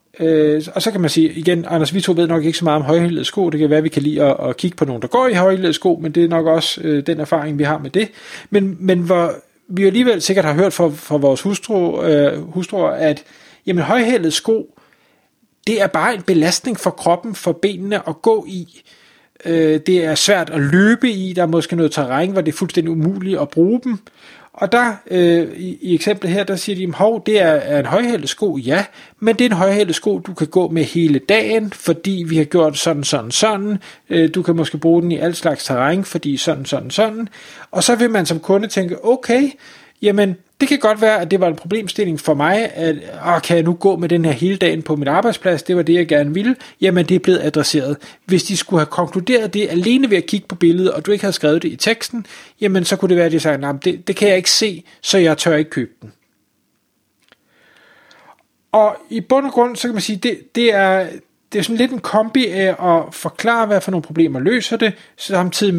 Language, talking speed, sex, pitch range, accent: Danish, 230 wpm, male, 160-205 Hz, native